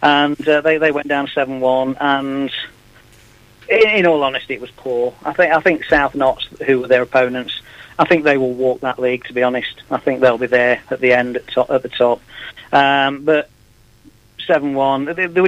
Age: 40-59